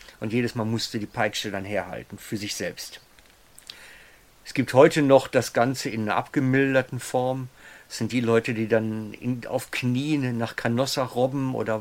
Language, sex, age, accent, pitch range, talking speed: German, male, 50-69, German, 110-130 Hz, 170 wpm